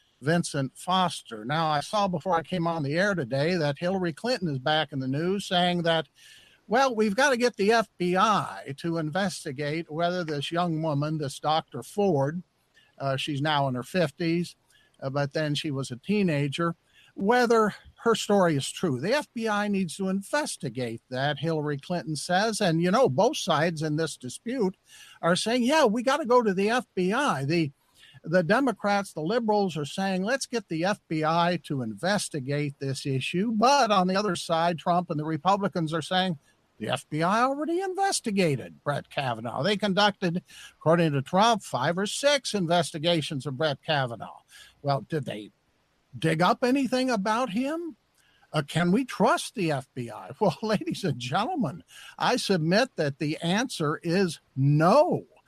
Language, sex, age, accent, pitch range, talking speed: English, male, 60-79, American, 150-205 Hz, 165 wpm